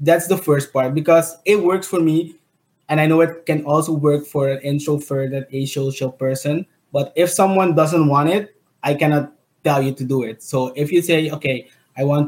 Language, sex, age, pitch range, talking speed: English, male, 20-39, 145-165 Hz, 205 wpm